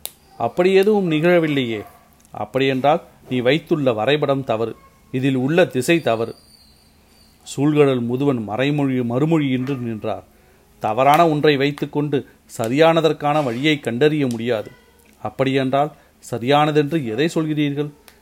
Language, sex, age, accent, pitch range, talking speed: Tamil, male, 40-59, native, 120-150 Hz, 95 wpm